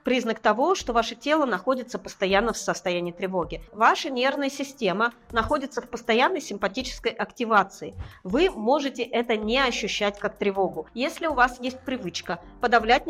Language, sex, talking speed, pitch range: Russian, female, 140 wpm, 210-270 Hz